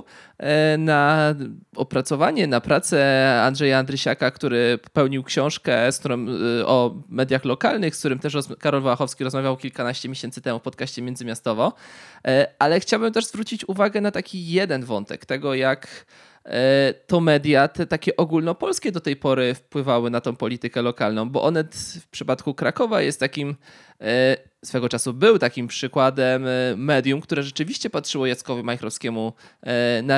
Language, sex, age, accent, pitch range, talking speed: Polish, male, 20-39, native, 125-145 Hz, 135 wpm